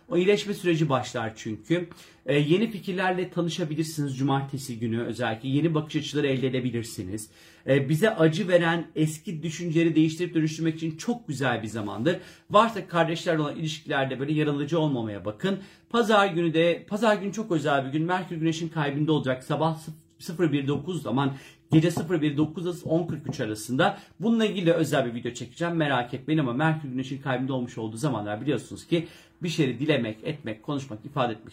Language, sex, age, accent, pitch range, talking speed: Turkish, male, 40-59, native, 135-175 Hz, 160 wpm